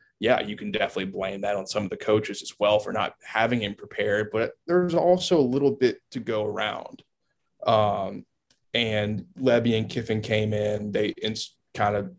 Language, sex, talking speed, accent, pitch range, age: English, male, 185 wpm, American, 110-140 Hz, 20-39